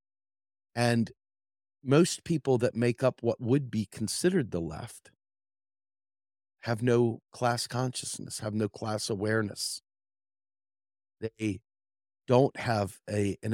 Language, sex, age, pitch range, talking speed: English, male, 40-59, 100-125 Hz, 105 wpm